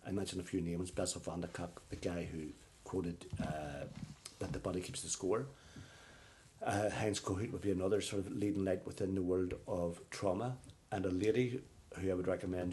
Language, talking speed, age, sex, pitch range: English, 200 wpm, 50-69, male, 85-105 Hz